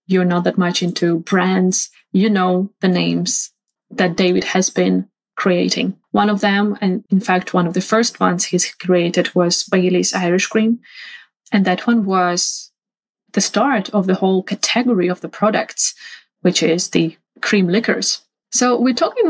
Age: 20-39